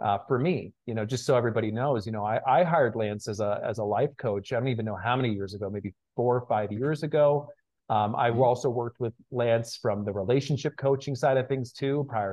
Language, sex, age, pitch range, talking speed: English, male, 40-59, 110-130 Hz, 245 wpm